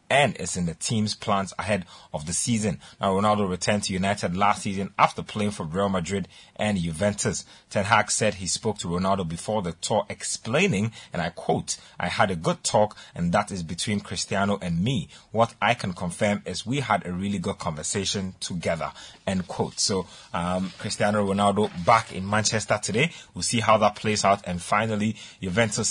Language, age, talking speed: English, 30-49, 190 wpm